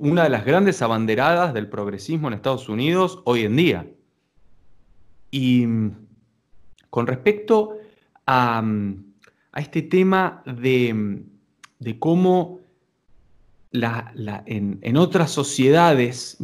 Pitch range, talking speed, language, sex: 125-185 Hz, 100 wpm, Spanish, male